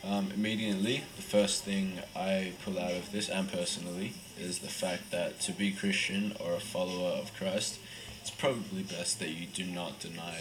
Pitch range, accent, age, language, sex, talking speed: 90-110 Hz, Australian, 20-39, English, male, 185 wpm